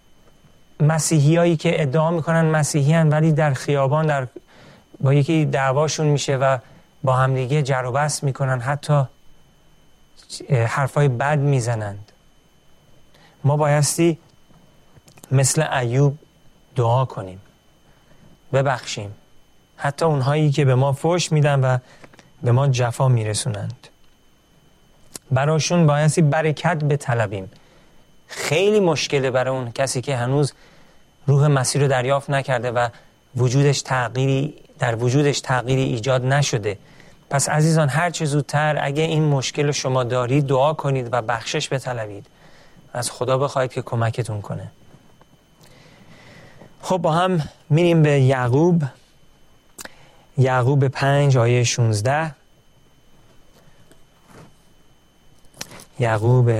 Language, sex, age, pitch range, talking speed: Persian, male, 40-59, 125-150 Hz, 105 wpm